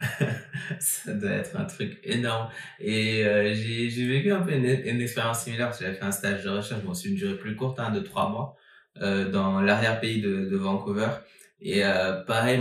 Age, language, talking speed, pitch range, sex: 20-39, French, 210 wpm, 100-125 Hz, male